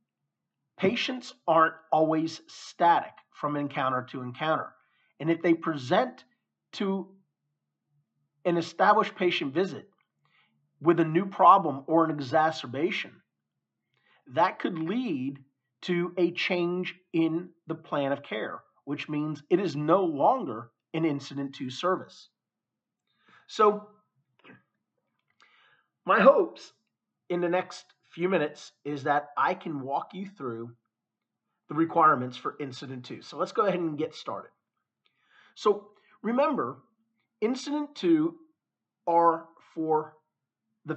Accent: American